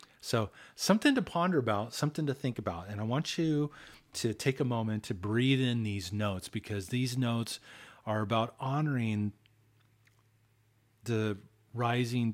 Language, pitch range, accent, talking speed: English, 100-120 Hz, American, 145 wpm